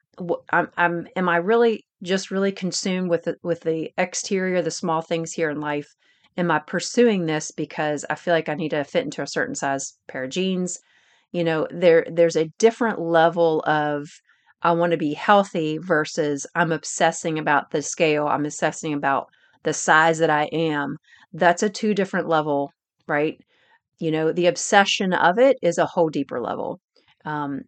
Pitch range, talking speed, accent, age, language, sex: 155-180 Hz, 180 wpm, American, 40-59, English, female